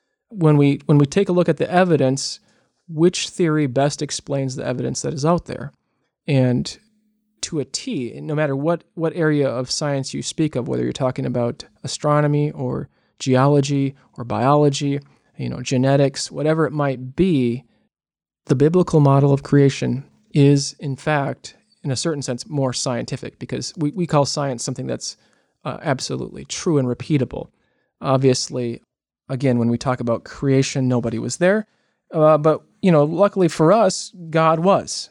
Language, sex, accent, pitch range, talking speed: English, male, American, 135-160 Hz, 160 wpm